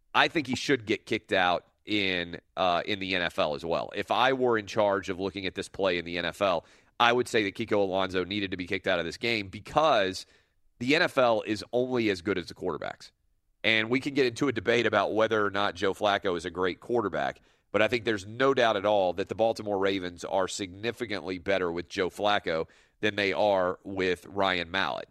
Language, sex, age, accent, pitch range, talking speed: English, male, 40-59, American, 95-120 Hz, 220 wpm